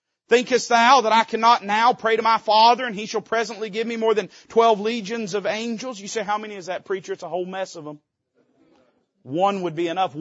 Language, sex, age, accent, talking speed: English, male, 40-59, American, 230 wpm